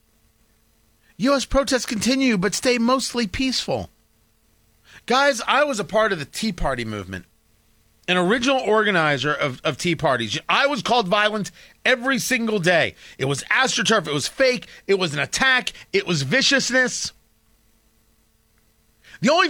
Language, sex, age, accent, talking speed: English, male, 40-59, American, 140 wpm